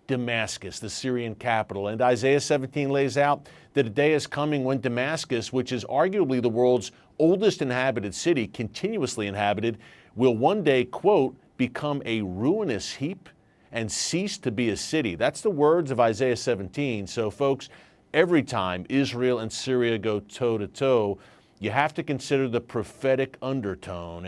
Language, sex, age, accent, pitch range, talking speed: English, male, 40-59, American, 110-135 Hz, 160 wpm